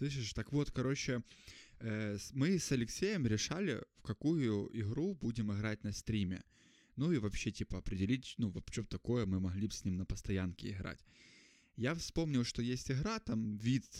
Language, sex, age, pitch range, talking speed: Russian, male, 20-39, 105-135 Hz, 160 wpm